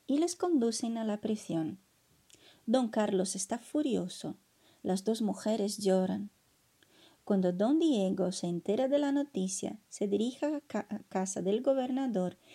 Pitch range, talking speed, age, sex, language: 190-265 Hz, 140 wpm, 30-49, female, Spanish